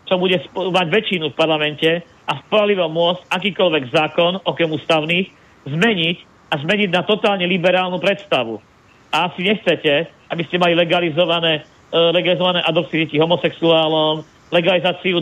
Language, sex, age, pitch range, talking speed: Slovak, male, 40-59, 160-180 Hz, 130 wpm